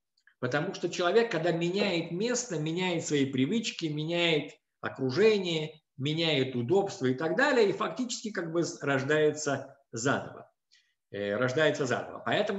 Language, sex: Russian, male